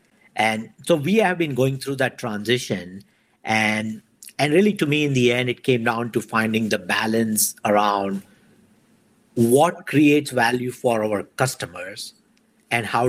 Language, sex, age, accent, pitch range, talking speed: English, male, 50-69, Indian, 110-135 Hz, 150 wpm